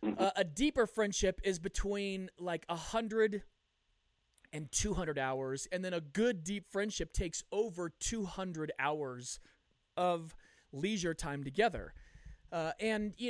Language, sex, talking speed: English, male, 140 wpm